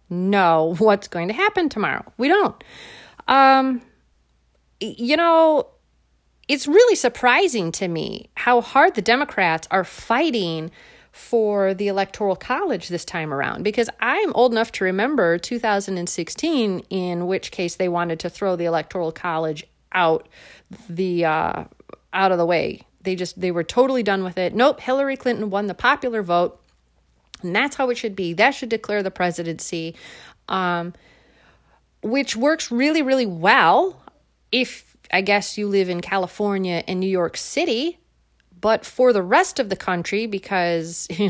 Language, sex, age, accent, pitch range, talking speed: English, female, 30-49, American, 175-245 Hz, 155 wpm